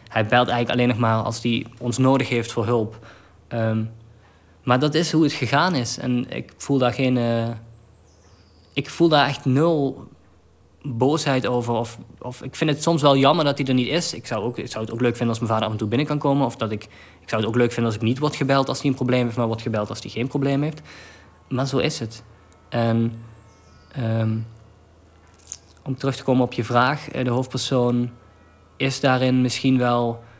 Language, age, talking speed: Dutch, 20-39, 220 wpm